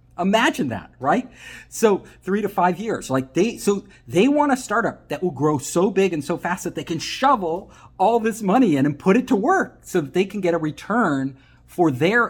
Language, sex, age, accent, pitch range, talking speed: English, male, 50-69, American, 135-220 Hz, 220 wpm